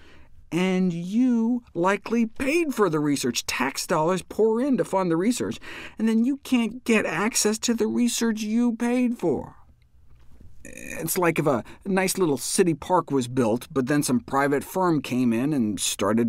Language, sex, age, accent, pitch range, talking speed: English, male, 50-69, American, 120-195 Hz, 170 wpm